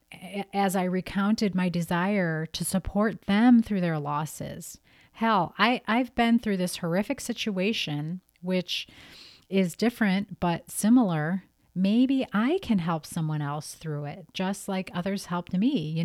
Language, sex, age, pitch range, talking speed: English, female, 30-49, 155-200 Hz, 140 wpm